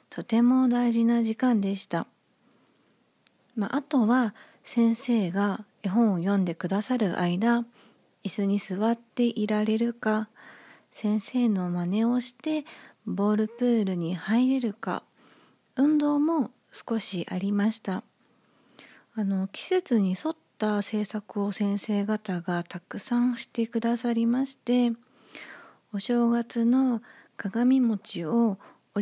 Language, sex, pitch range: Japanese, female, 200-245 Hz